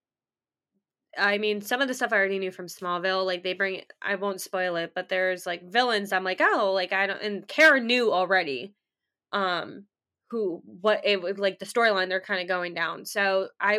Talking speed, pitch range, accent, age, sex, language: 210 wpm, 185-225 Hz, American, 10-29, female, English